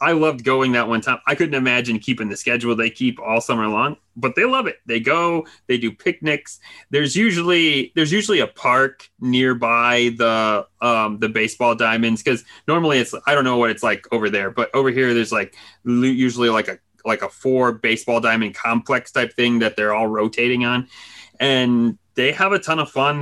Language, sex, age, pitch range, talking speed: English, male, 30-49, 115-140 Hz, 200 wpm